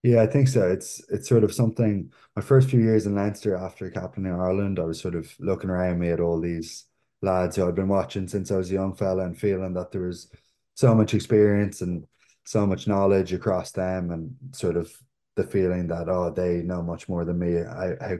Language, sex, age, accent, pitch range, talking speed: English, male, 20-39, Irish, 85-105 Hz, 230 wpm